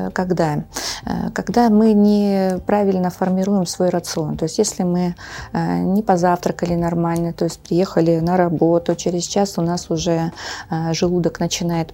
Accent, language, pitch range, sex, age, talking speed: native, Russian, 165-195 Hz, female, 20-39, 130 wpm